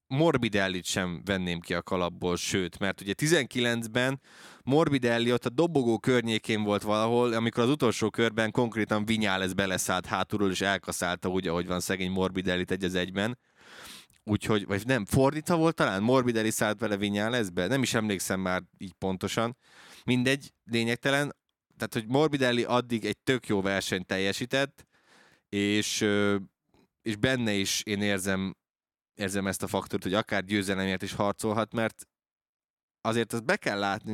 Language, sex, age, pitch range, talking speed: Hungarian, male, 20-39, 95-125 Hz, 145 wpm